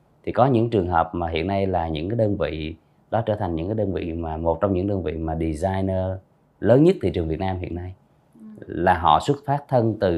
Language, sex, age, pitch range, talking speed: Vietnamese, male, 20-39, 85-115 Hz, 250 wpm